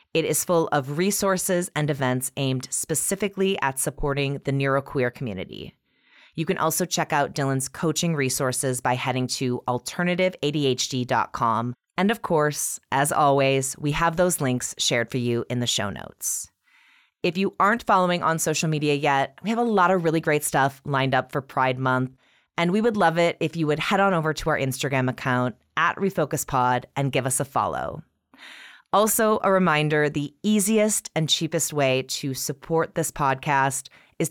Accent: American